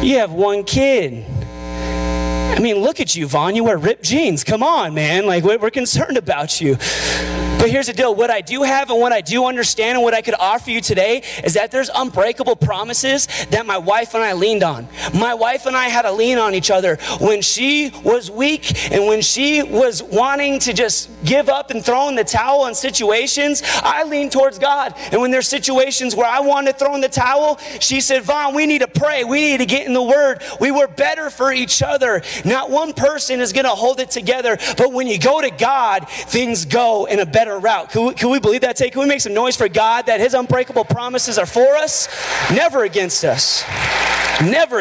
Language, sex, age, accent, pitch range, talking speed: English, male, 30-49, American, 195-270 Hz, 220 wpm